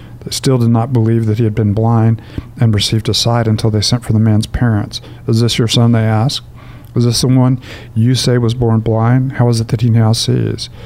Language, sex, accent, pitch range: English, male, American, 115-125 Hz